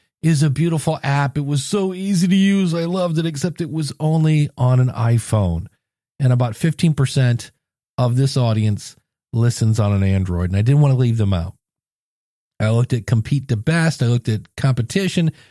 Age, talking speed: 40-59, 185 wpm